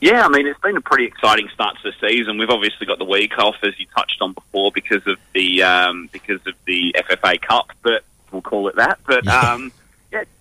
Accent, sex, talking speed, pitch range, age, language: Australian, male, 235 wpm, 95-120 Hz, 30-49, English